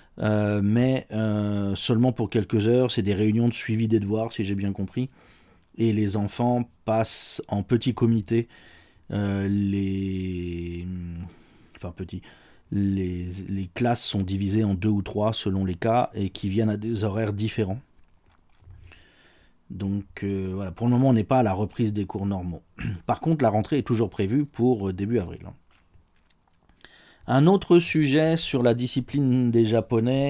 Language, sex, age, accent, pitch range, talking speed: French, male, 40-59, French, 100-125 Hz, 160 wpm